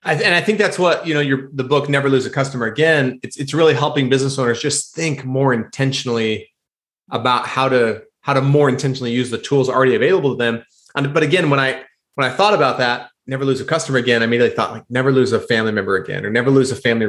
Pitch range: 120-140 Hz